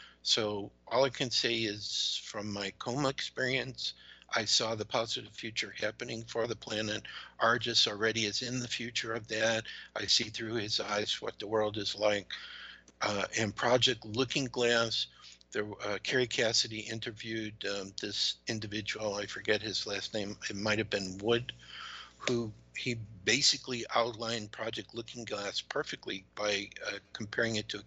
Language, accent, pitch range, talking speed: English, American, 105-120 Hz, 155 wpm